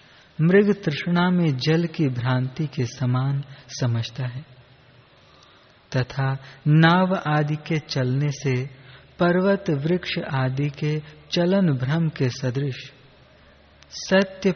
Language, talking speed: Hindi, 105 wpm